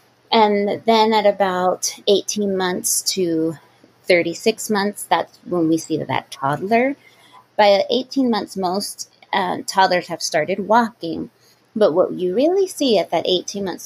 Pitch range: 165-210 Hz